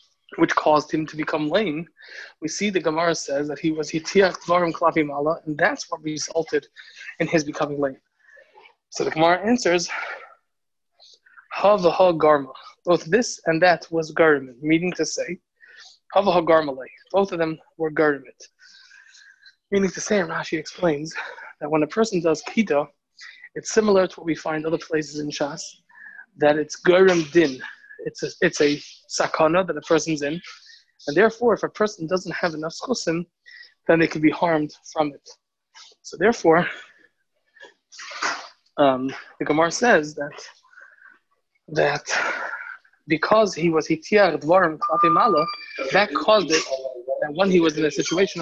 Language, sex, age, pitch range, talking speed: English, male, 20-39, 155-205 Hz, 140 wpm